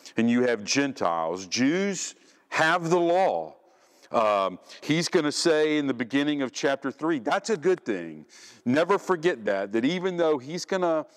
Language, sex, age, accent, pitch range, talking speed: English, male, 50-69, American, 115-185 Hz, 165 wpm